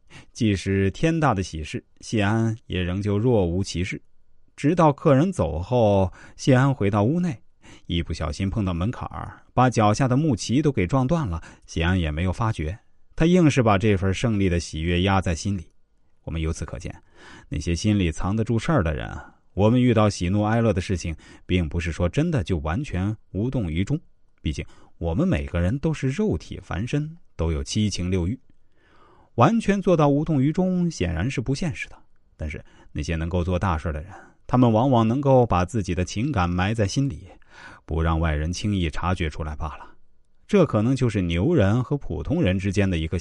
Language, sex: Chinese, male